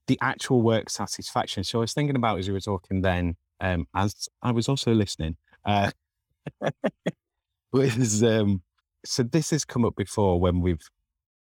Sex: male